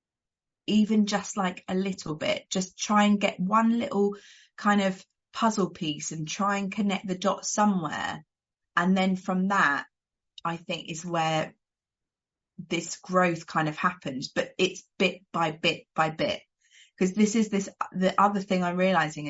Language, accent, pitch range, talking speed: English, British, 165-210 Hz, 160 wpm